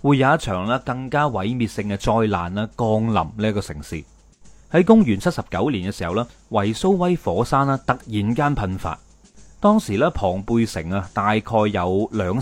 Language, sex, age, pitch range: Chinese, male, 30-49, 100-140 Hz